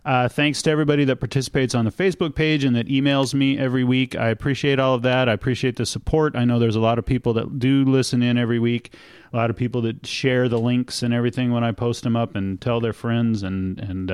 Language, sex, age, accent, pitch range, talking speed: English, male, 40-59, American, 115-135 Hz, 250 wpm